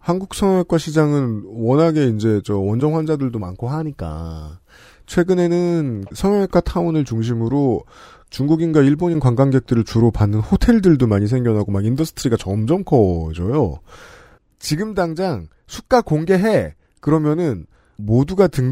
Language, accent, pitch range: Korean, native, 100-160 Hz